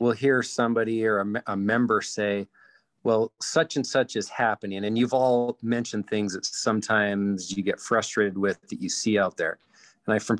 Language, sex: English, male